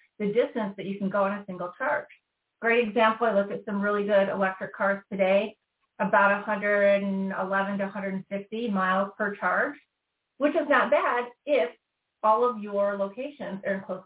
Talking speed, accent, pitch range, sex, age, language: 170 wpm, American, 190-215 Hz, female, 40-59, English